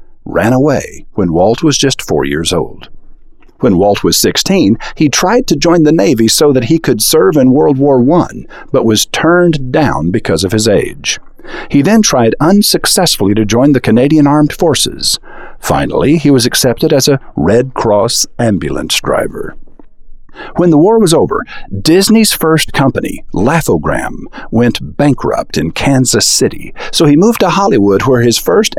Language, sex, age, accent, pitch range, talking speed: English, male, 50-69, American, 115-160 Hz, 165 wpm